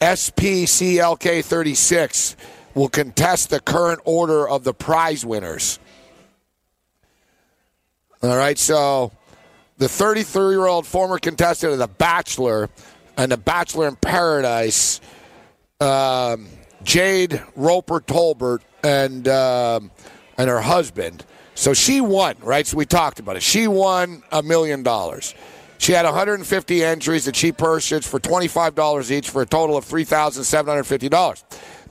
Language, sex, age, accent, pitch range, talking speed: English, male, 50-69, American, 140-170 Hz, 120 wpm